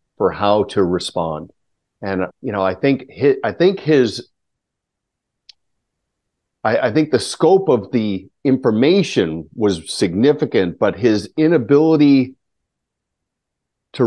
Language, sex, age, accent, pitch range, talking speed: English, male, 50-69, American, 95-140 Hz, 105 wpm